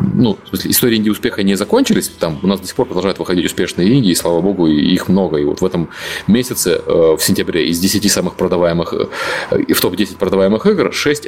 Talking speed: 210 wpm